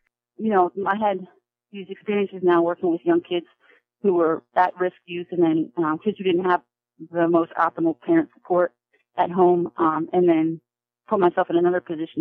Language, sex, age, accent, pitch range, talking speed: English, female, 30-49, American, 160-185 Hz, 180 wpm